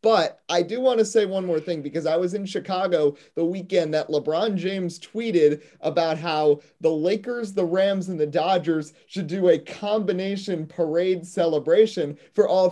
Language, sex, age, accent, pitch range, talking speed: English, male, 30-49, American, 155-210 Hz, 175 wpm